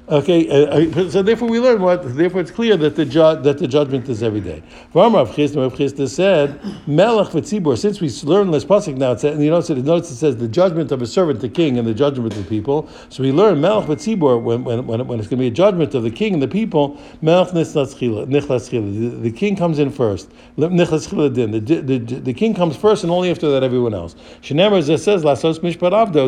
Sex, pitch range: male, 130-175 Hz